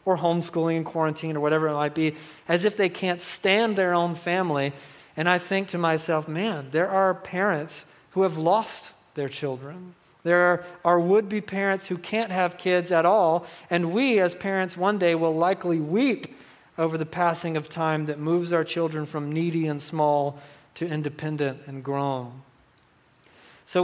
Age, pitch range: 40-59, 155-180 Hz